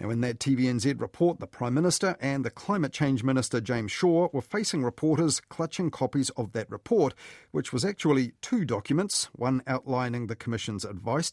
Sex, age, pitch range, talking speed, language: male, 40-59, 115-155 Hz, 175 wpm, English